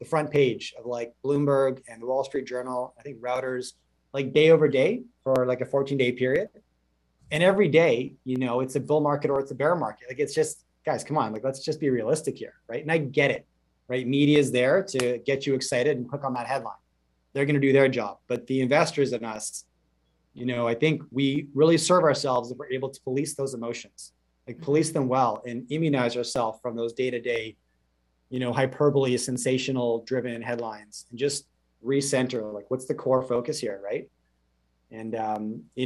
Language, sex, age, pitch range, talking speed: English, male, 30-49, 115-140 Hz, 210 wpm